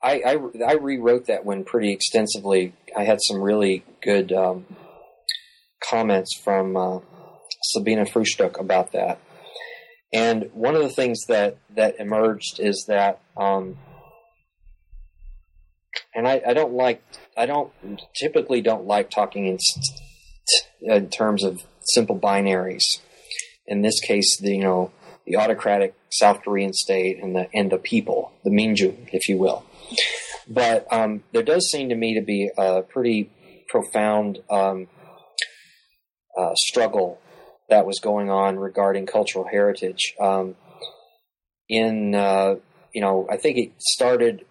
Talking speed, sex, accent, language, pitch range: 140 wpm, male, American, English, 95-110 Hz